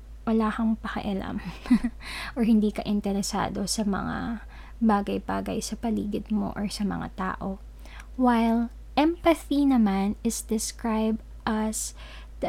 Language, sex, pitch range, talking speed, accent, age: Filipino, female, 210-240 Hz, 115 wpm, native, 20-39